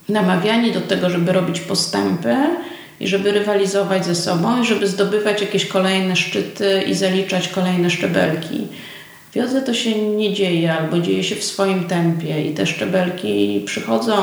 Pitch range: 160-195 Hz